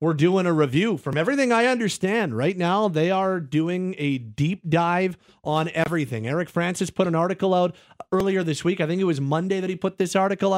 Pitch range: 155-190 Hz